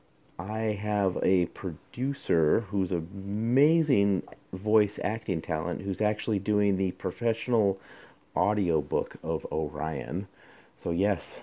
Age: 40-59